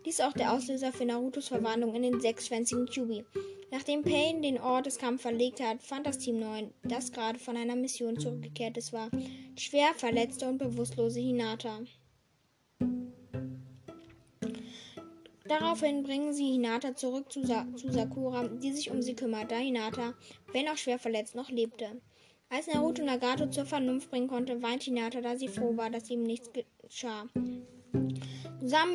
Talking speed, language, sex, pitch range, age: 160 wpm, German, female, 230-270 Hz, 20-39